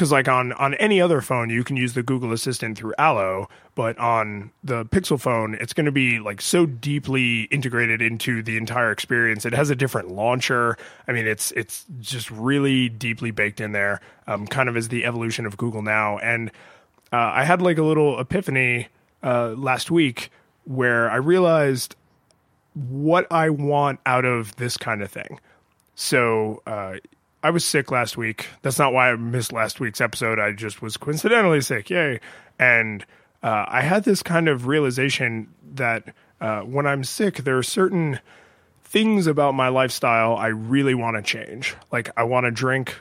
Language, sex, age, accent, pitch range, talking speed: English, male, 20-39, American, 115-135 Hz, 180 wpm